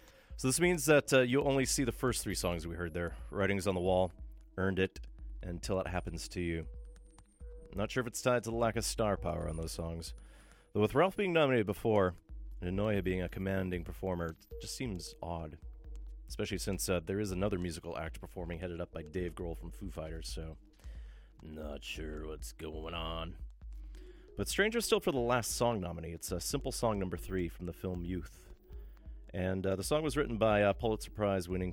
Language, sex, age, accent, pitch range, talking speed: English, male, 30-49, American, 80-105 Hz, 200 wpm